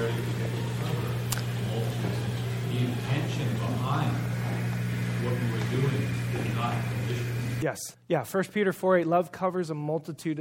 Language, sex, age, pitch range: English, male, 30-49, 130-170 Hz